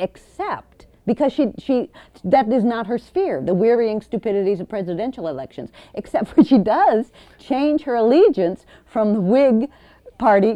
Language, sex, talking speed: English, female, 150 wpm